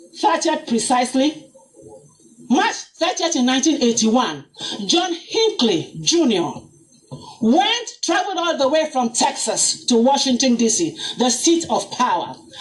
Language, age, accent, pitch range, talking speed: English, 40-59, Nigerian, 255-340 Hz, 110 wpm